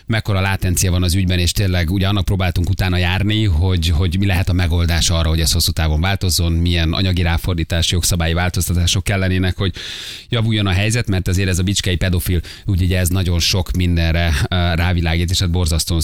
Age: 30-49